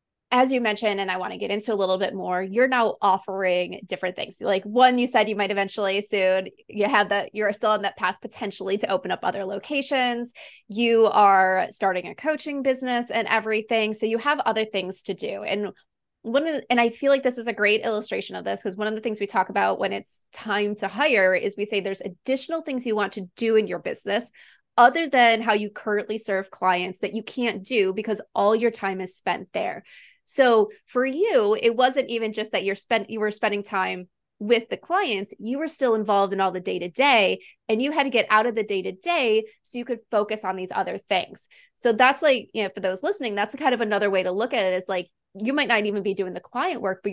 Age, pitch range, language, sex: 20-39, 195-240 Hz, English, female